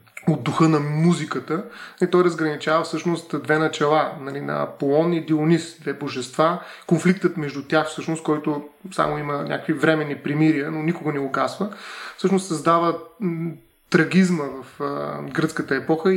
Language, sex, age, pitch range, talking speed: Bulgarian, male, 30-49, 145-165 Hz, 145 wpm